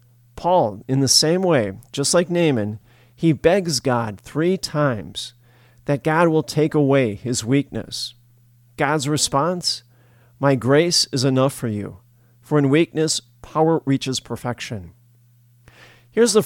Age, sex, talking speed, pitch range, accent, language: 40-59, male, 130 wpm, 120-150 Hz, American, English